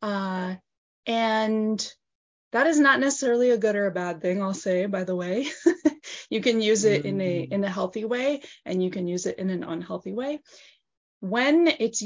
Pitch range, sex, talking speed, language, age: 185-255 Hz, female, 190 wpm, English, 20-39